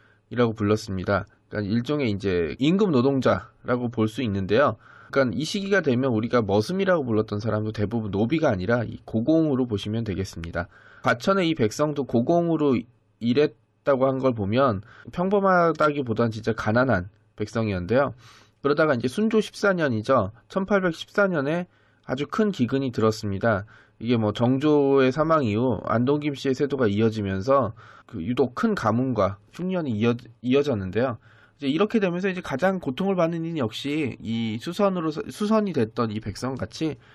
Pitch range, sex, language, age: 110-155 Hz, male, Korean, 20-39